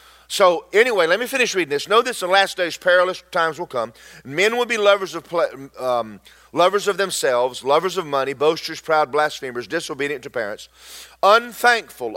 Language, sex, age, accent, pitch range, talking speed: English, male, 40-59, American, 145-205 Hz, 180 wpm